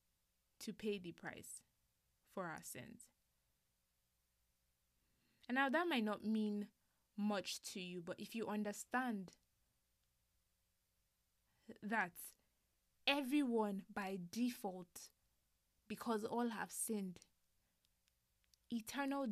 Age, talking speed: 20-39, 90 wpm